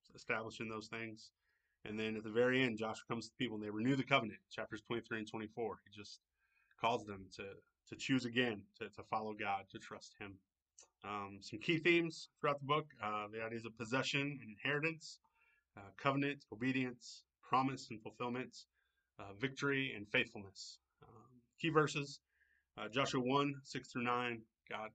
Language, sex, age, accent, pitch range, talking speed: English, male, 20-39, American, 105-130 Hz, 175 wpm